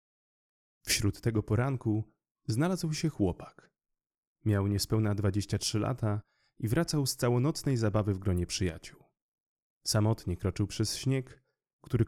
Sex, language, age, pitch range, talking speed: male, Polish, 30-49, 95-115 Hz, 120 wpm